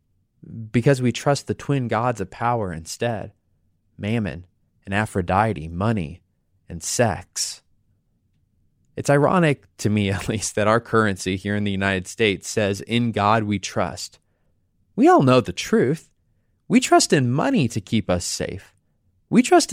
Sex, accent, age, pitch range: male, American, 20-39, 95-130 Hz